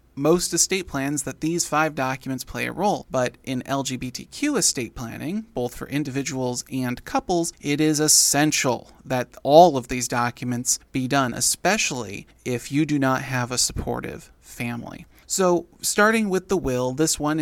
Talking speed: 160 wpm